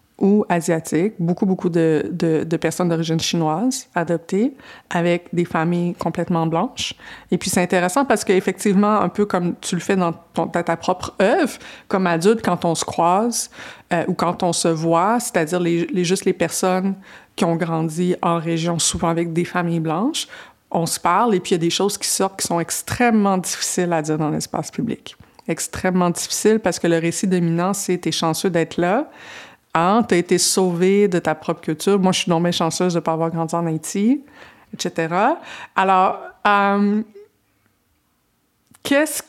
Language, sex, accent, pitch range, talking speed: French, female, Canadian, 170-210 Hz, 185 wpm